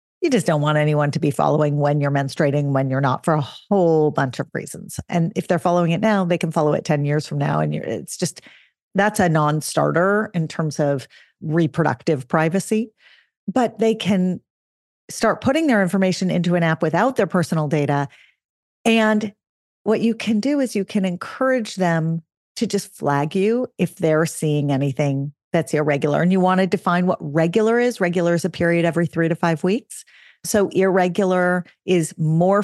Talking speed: 185 wpm